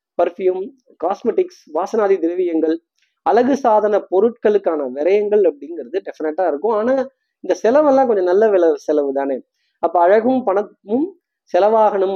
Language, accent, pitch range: Tamil, native, 170-255 Hz